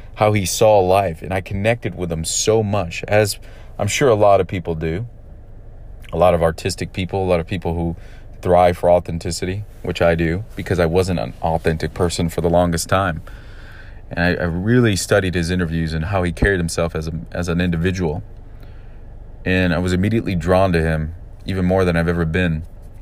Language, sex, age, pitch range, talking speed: English, male, 30-49, 90-105 Hz, 195 wpm